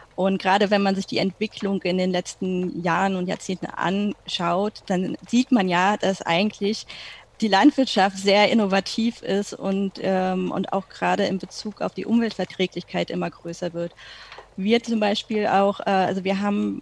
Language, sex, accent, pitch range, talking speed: German, female, German, 190-215 Hz, 165 wpm